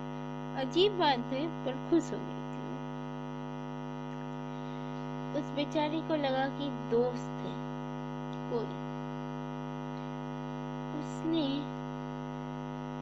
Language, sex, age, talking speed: English, female, 20-39, 75 wpm